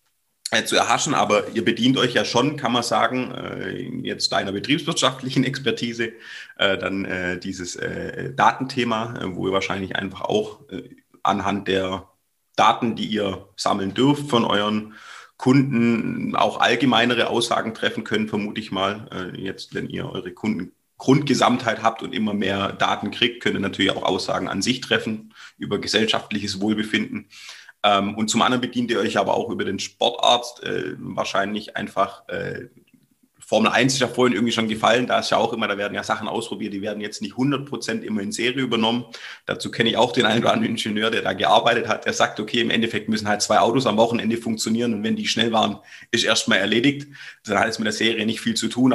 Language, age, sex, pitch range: German, 30-49, male, 100-125 Hz